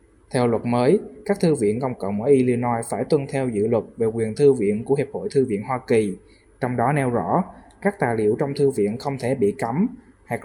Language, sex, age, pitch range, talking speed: Vietnamese, male, 20-39, 115-145 Hz, 235 wpm